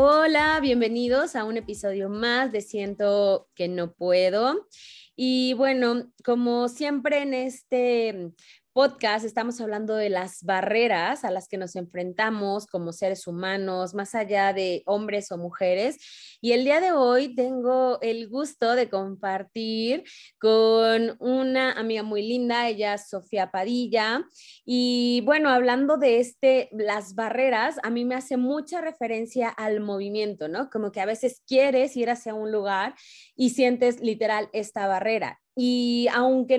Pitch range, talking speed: 205-250 Hz, 145 wpm